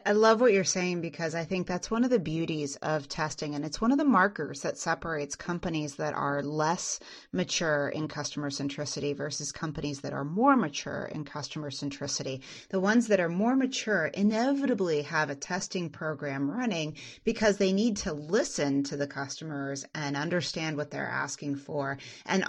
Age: 30-49